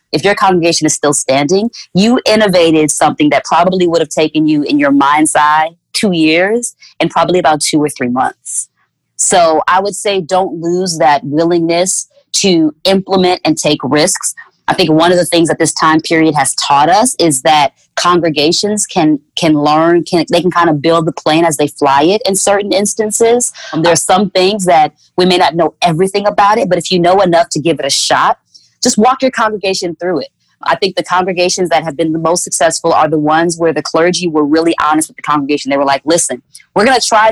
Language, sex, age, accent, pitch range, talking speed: English, female, 20-39, American, 155-195 Hz, 215 wpm